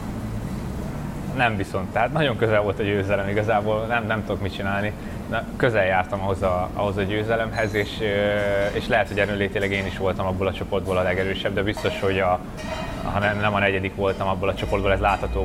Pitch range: 100-110 Hz